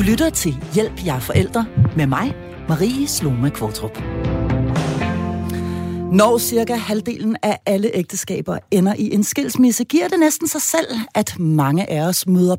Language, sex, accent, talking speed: Danish, female, native, 150 wpm